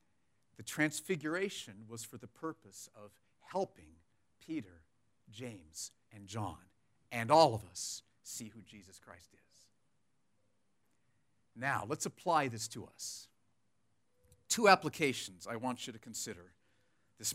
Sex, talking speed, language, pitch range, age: male, 120 wpm, English, 105-165 Hz, 50-69